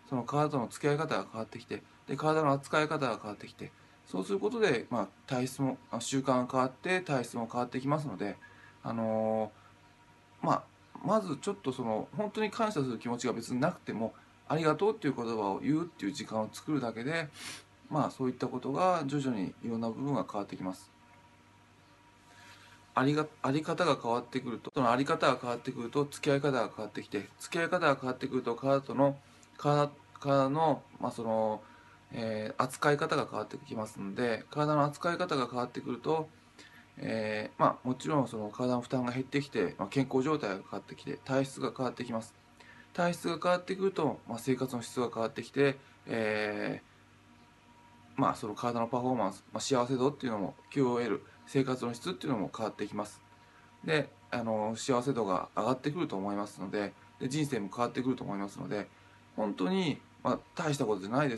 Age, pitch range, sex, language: 20-39, 110-140 Hz, male, Japanese